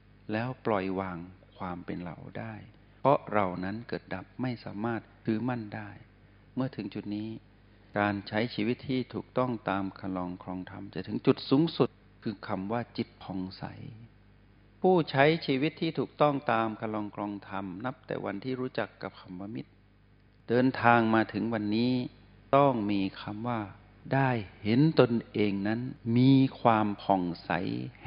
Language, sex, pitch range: Thai, male, 100-120 Hz